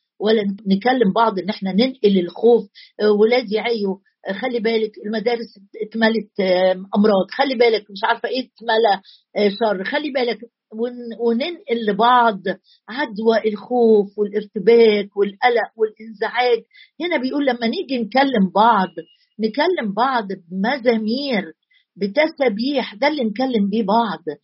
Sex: female